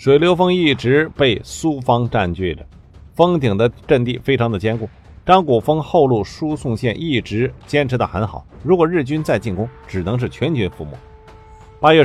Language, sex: Chinese, male